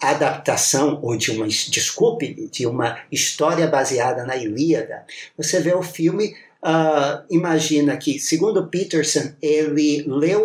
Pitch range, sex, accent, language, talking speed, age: 150-185 Hz, male, Brazilian, Portuguese, 120 wpm, 50-69